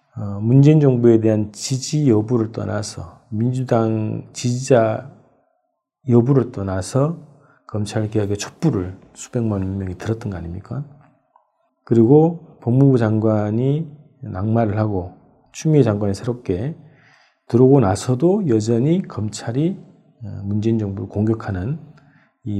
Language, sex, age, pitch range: Korean, male, 40-59, 105-140 Hz